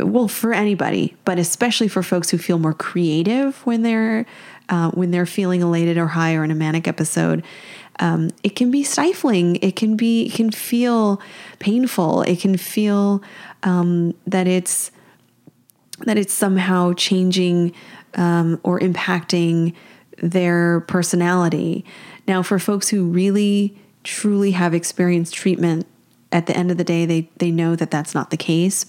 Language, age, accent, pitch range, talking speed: English, 30-49, American, 165-195 Hz, 155 wpm